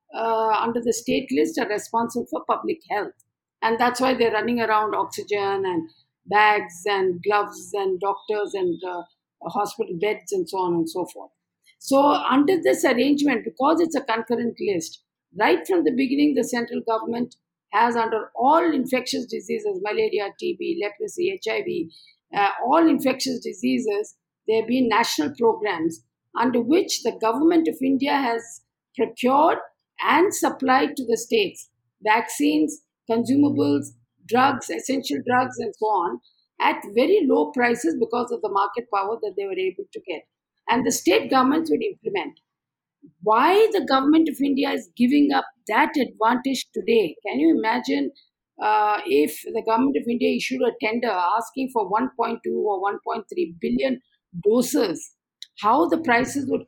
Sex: female